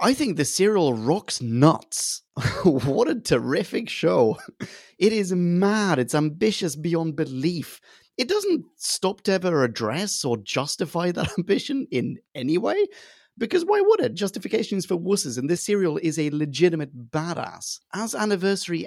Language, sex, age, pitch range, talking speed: English, male, 30-49, 130-200 Hz, 145 wpm